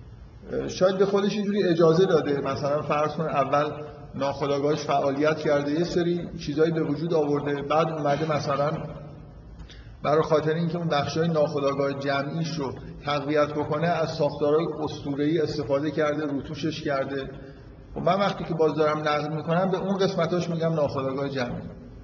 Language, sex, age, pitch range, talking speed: Persian, male, 50-69, 140-165 Hz, 140 wpm